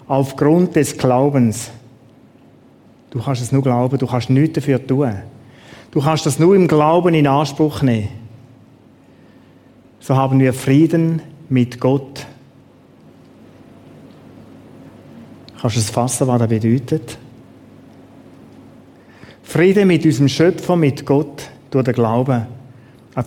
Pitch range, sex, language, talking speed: 125-145 Hz, male, German, 120 wpm